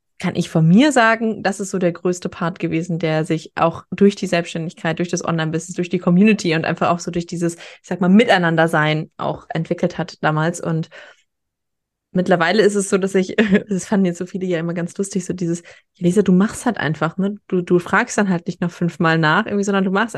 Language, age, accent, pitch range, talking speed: German, 20-39, German, 175-205 Hz, 225 wpm